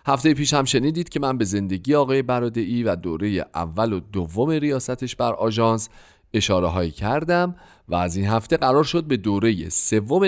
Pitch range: 90-130 Hz